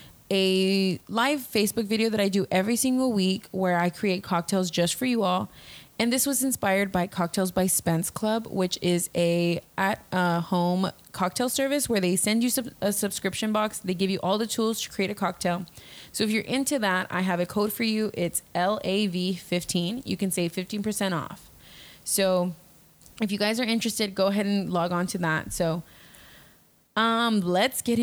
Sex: female